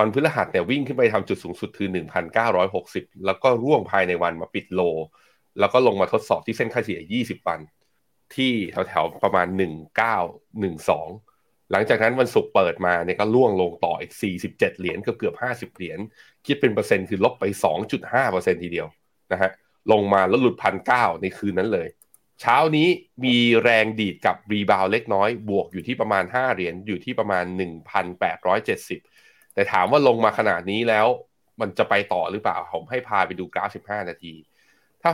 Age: 20-39